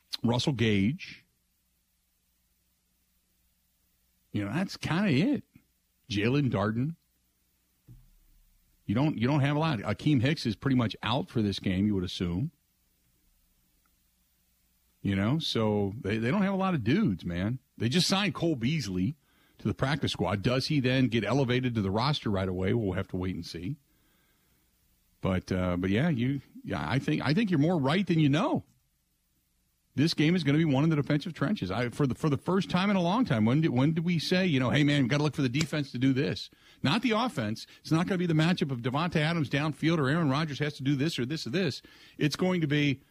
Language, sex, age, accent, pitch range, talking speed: English, male, 50-69, American, 95-150 Hz, 215 wpm